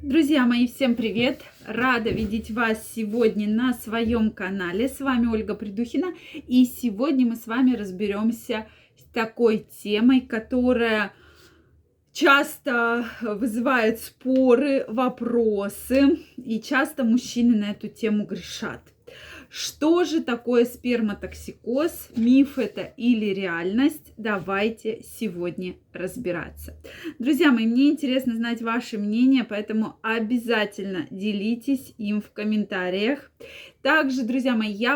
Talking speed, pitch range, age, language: 110 wpm, 215-255 Hz, 20-39, Russian